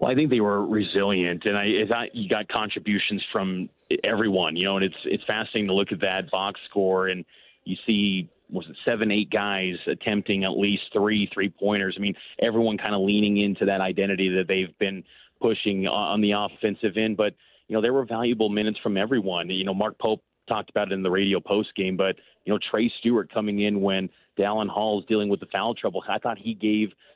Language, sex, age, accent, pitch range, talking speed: English, male, 30-49, American, 95-110 Hz, 215 wpm